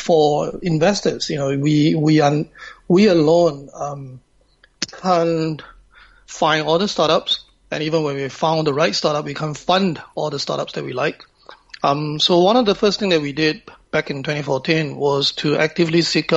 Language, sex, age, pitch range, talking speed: English, male, 30-49, 145-170 Hz, 180 wpm